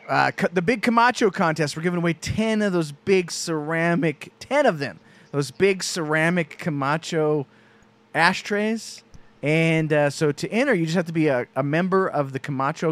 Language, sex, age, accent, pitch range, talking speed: English, male, 30-49, American, 140-180 Hz, 165 wpm